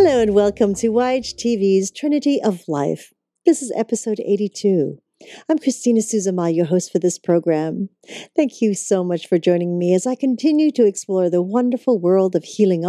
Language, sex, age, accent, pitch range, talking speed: English, female, 50-69, American, 175-230 Hz, 170 wpm